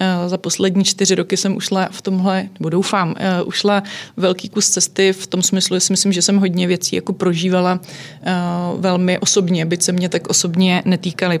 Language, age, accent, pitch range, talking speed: Czech, 20-39, native, 175-190 Hz, 170 wpm